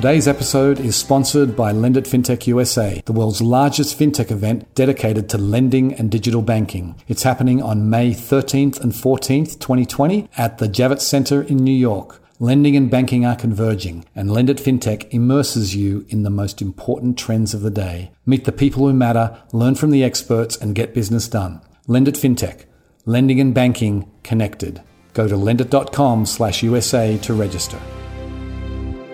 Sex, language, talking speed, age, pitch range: male, English, 155 wpm, 40-59, 100-130 Hz